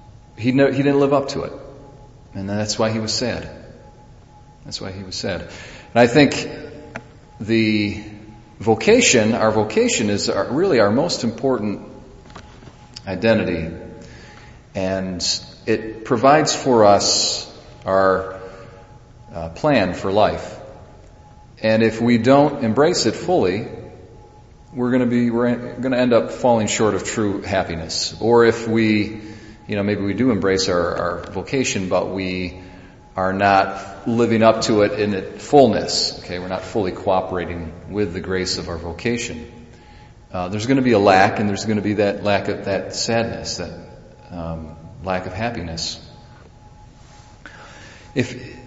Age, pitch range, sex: 40-59, 95-120 Hz, male